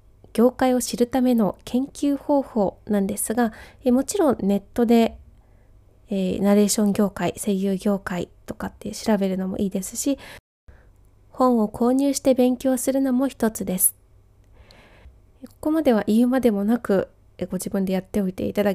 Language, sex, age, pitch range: Japanese, female, 20-39, 185-255 Hz